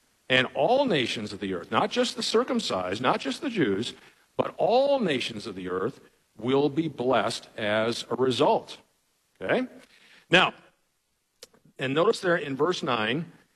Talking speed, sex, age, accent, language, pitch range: 150 wpm, male, 50-69, American, English, 130-195 Hz